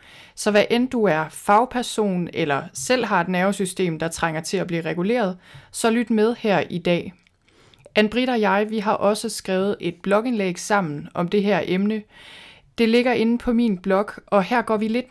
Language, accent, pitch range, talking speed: Danish, native, 185-225 Hz, 190 wpm